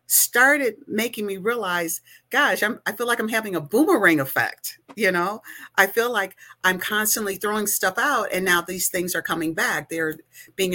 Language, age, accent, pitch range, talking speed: English, 50-69, American, 165-200 Hz, 185 wpm